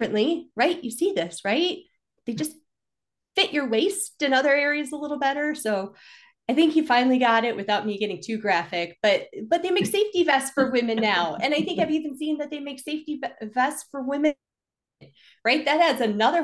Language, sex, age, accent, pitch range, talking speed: English, female, 30-49, American, 185-260 Hz, 200 wpm